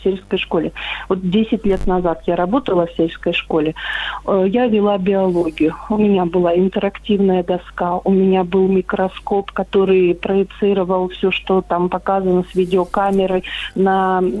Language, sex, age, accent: Russian, female, 40-59, native